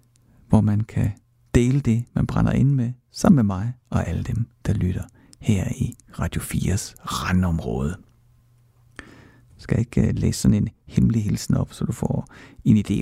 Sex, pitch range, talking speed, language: male, 95-120 Hz, 160 wpm, Danish